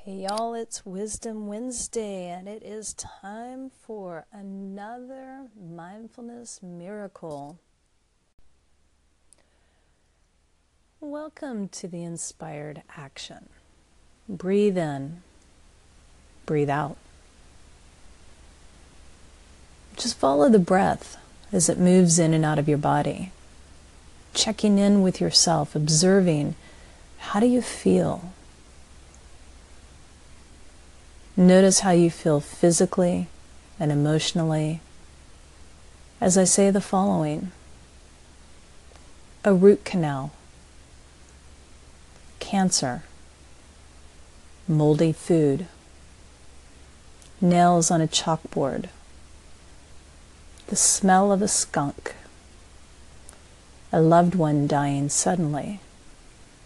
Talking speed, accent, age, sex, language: 80 wpm, American, 40-59, female, English